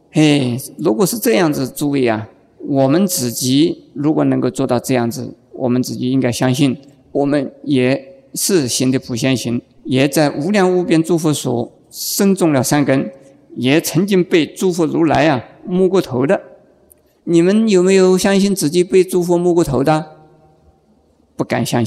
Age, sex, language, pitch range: 50-69, male, Chinese, 125-170 Hz